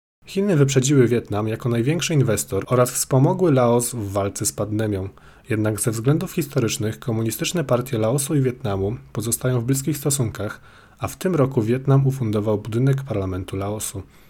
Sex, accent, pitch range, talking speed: male, native, 105-135 Hz, 145 wpm